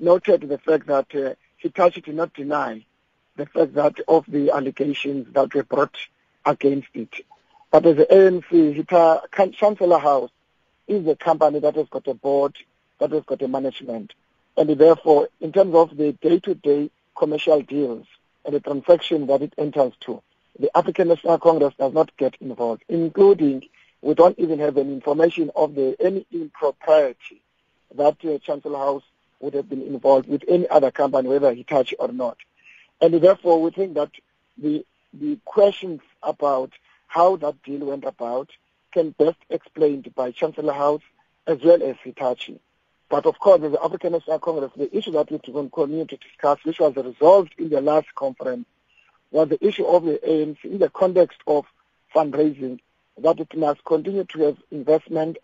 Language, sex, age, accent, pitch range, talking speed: English, male, 50-69, South African, 140-170 Hz, 165 wpm